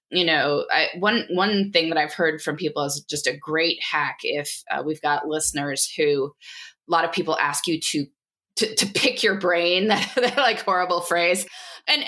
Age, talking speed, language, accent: 20-39, 195 wpm, English, American